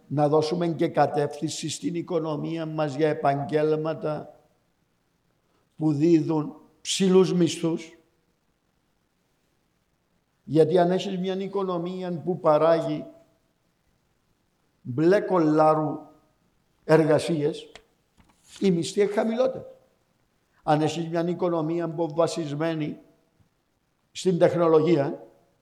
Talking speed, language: 75 wpm, Greek